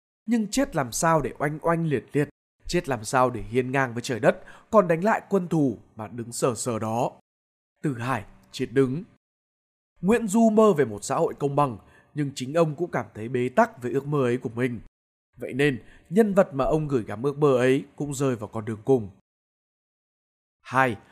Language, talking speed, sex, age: Vietnamese, 205 wpm, male, 20-39